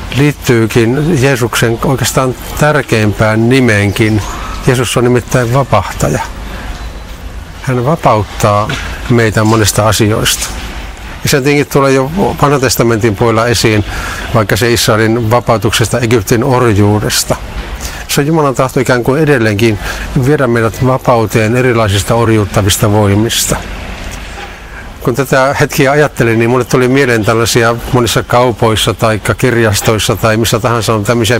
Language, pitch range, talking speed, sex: Finnish, 110-130 Hz, 115 wpm, male